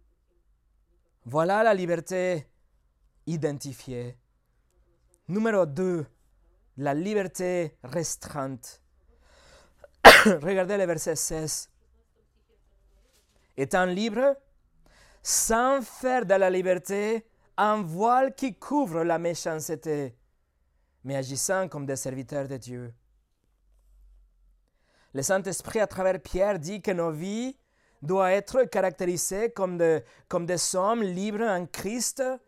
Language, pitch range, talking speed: French, 150-225 Hz, 100 wpm